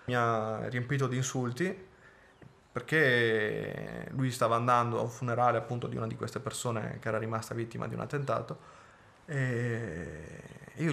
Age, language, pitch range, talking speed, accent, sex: 20-39, Italian, 120-140 Hz, 150 wpm, native, male